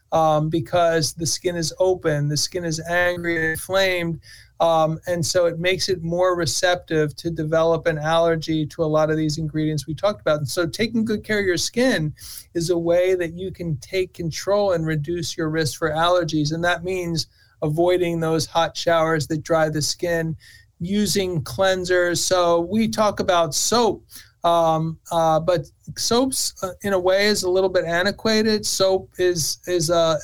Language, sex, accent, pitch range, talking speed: English, male, American, 160-185 Hz, 180 wpm